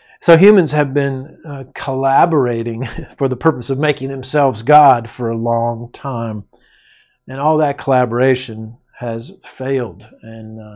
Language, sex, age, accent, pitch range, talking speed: English, male, 50-69, American, 130-155 Hz, 135 wpm